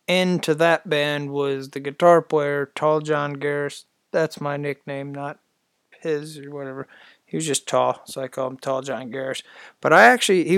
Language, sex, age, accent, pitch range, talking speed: English, male, 30-49, American, 145-165 Hz, 175 wpm